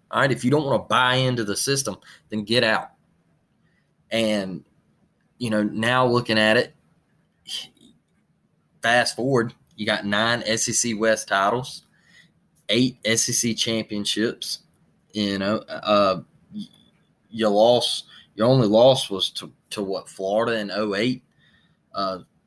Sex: male